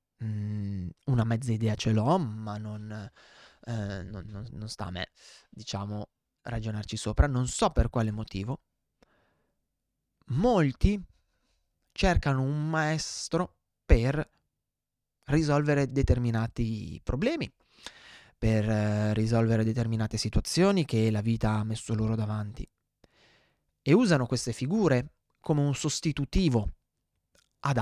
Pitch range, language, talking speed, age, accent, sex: 110-130 Hz, Italian, 100 wpm, 20-39, native, male